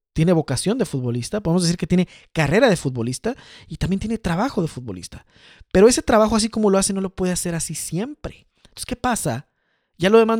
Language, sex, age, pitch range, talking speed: Spanish, male, 40-59, 140-200 Hz, 210 wpm